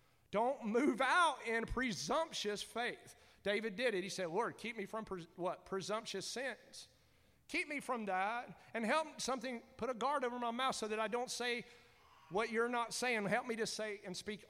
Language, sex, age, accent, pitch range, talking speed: English, male, 40-59, American, 200-255 Hz, 190 wpm